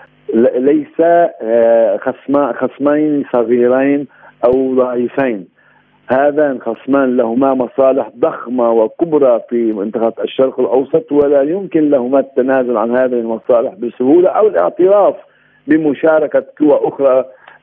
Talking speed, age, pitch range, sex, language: 95 wpm, 50-69, 125-160 Hz, male, Arabic